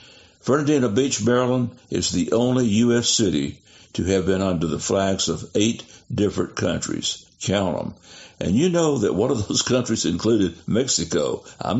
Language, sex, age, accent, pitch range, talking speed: English, male, 60-79, American, 95-120 Hz, 160 wpm